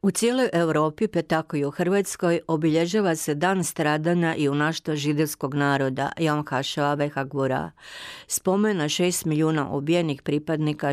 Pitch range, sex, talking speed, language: 145-165 Hz, female, 135 wpm, Croatian